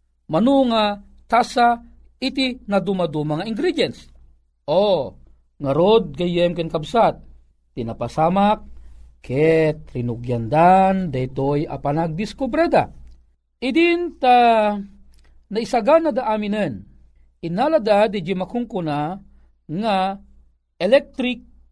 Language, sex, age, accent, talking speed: Filipino, male, 40-59, native, 75 wpm